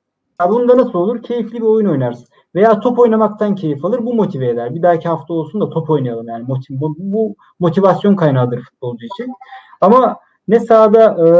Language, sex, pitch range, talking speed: Turkish, male, 150-195 Hz, 175 wpm